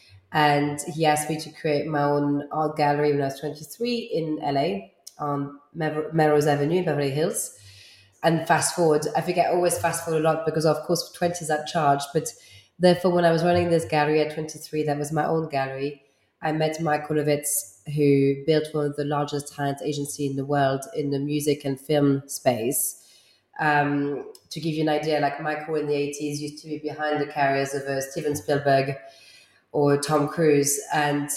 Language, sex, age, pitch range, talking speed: English, female, 30-49, 145-160 Hz, 190 wpm